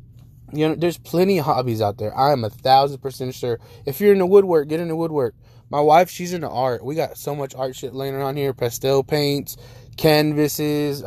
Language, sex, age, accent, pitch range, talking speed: English, male, 20-39, American, 120-160 Hz, 215 wpm